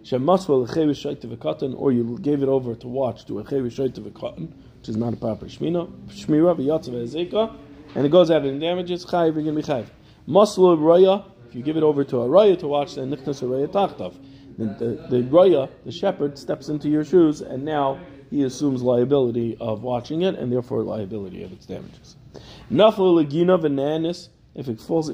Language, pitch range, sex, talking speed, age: English, 115-150 Hz, male, 150 wpm, 40-59